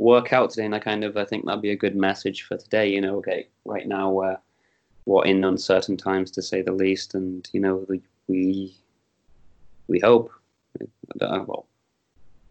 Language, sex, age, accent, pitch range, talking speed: English, male, 20-39, British, 95-100 Hz, 175 wpm